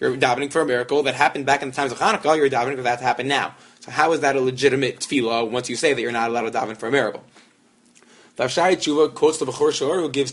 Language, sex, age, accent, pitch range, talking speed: English, male, 20-39, American, 130-155 Hz, 275 wpm